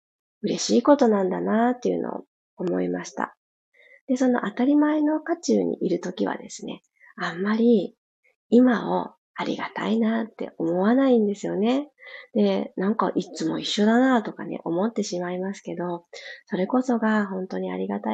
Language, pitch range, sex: Japanese, 185-240 Hz, female